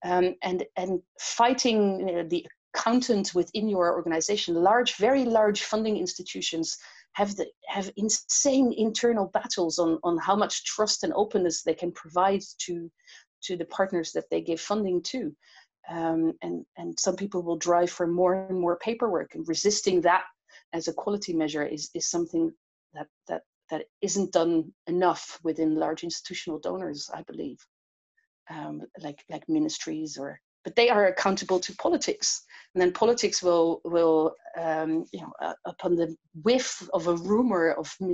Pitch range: 170-215 Hz